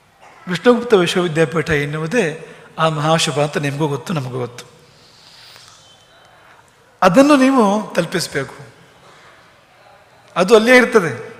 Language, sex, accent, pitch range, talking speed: English, male, Indian, 150-195 Hz, 95 wpm